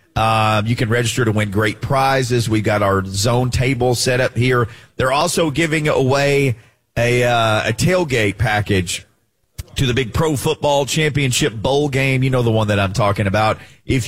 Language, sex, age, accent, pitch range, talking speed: English, male, 40-59, American, 100-130 Hz, 180 wpm